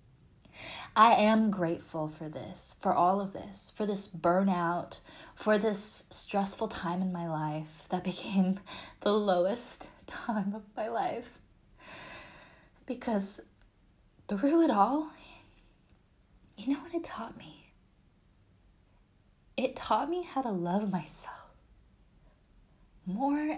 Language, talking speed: English, 115 wpm